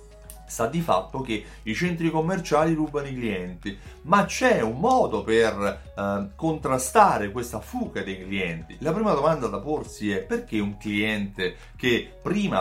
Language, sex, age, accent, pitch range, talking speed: Italian, male, 30-49, native, 110-150 Hz, 150 wpm